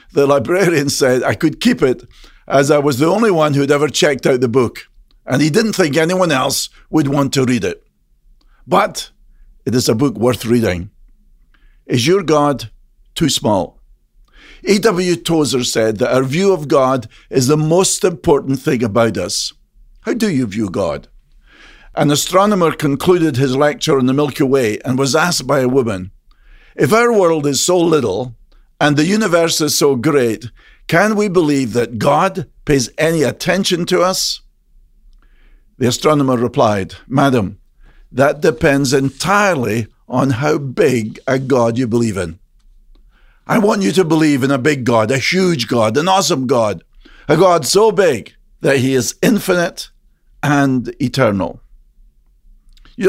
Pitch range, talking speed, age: 125-160 Hz, 160 wpm, 50-69